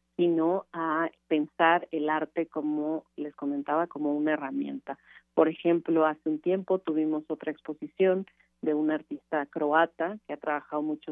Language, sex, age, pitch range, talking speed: Spanish, female, 40-59, 150-170 Hz, 145 wpm